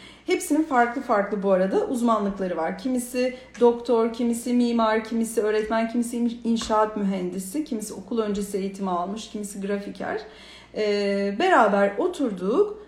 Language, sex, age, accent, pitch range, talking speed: Turkish, female, 40-59, native, 200-285 Hz, 120 wpm